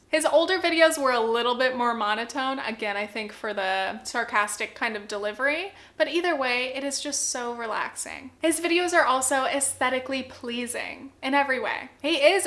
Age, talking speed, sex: 10-29, 180 wpm, female